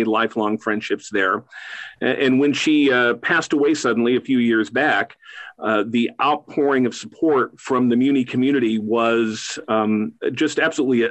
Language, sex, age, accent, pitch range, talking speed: English, male, 40-59, American, 115-135 Hz, 145 wpm